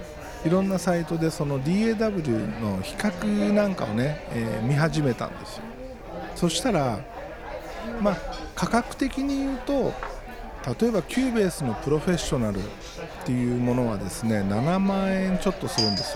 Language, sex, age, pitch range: Japanese, male, 50-69, 120-190 Hz